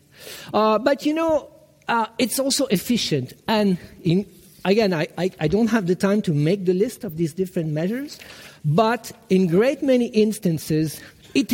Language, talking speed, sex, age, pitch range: German, 160 wpm, male, 50-69, 180-240 Hz